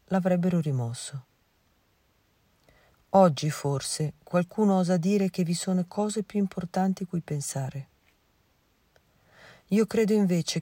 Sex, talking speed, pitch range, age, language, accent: female, 100 wpm, 145-190 Hz, 40-59, Italian, native